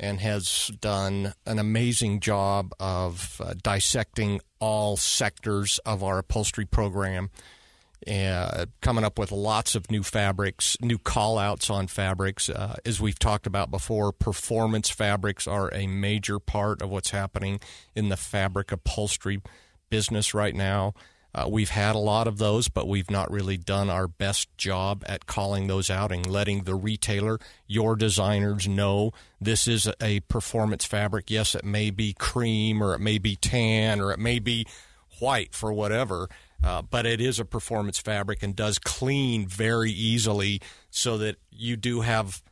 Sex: male